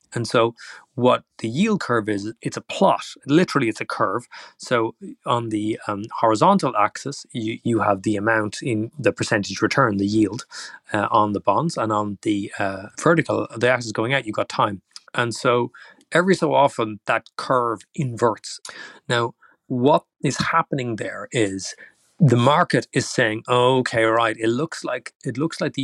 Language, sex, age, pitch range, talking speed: English, male, 30-49, 110-130 Hz, 175 wpm